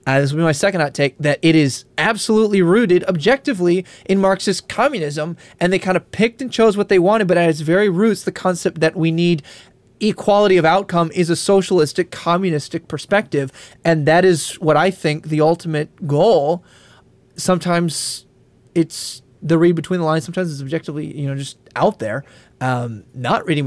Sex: male